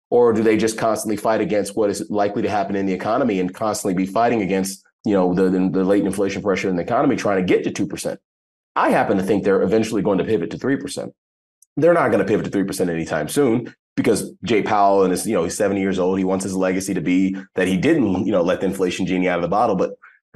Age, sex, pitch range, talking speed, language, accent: 30-49, male, 95-110 Hz, 265 wpm, English, American